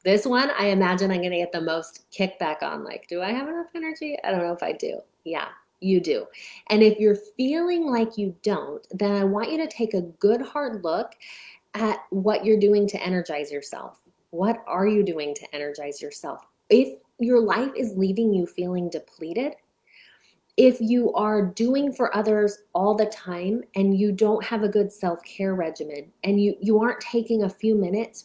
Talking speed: 190 wpm